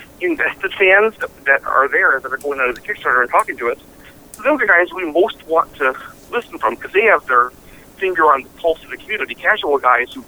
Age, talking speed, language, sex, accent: 40-59, 235 wpm, English, male, American